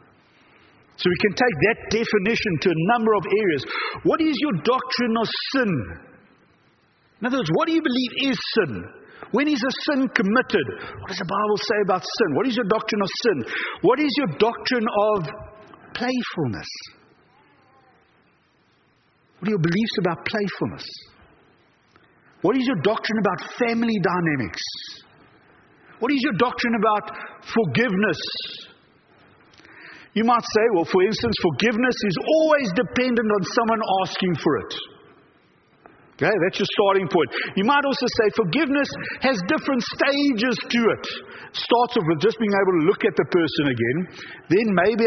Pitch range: 185-250 Hz